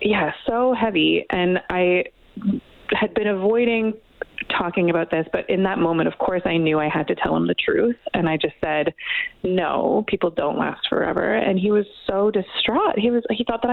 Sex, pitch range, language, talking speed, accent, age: female, 175-240 Hz, English, 195 wpm, American, 30-49